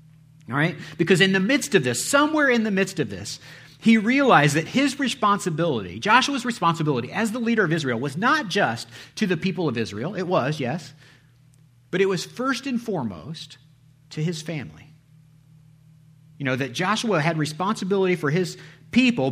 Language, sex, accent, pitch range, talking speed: English, male, American, 130-180 Hz, 170 wpm